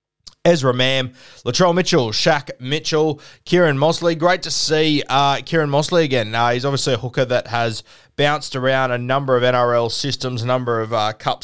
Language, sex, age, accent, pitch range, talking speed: English, male, 20-39, Australian, 115-140 Hz, 185 wpm